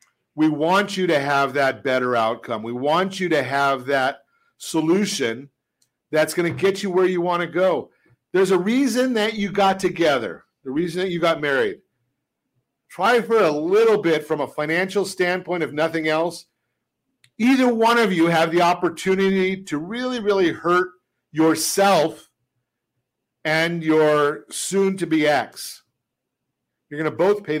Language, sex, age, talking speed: English, male, 50-69, 155 wpm